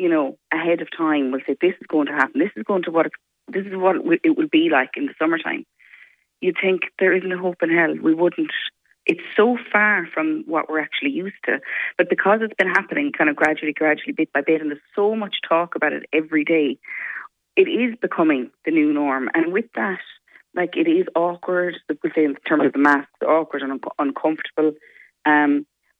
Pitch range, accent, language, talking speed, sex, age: 155-240 Hz, Irish, English, 210 wpm, female, 30-49